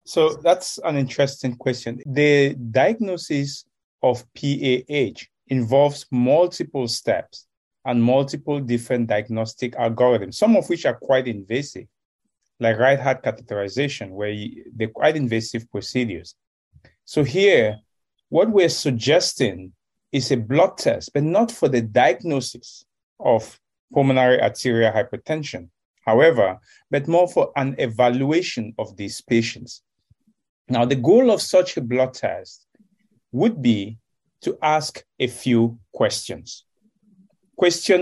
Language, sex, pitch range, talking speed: English, male, 120-155 Hz, 120 wpm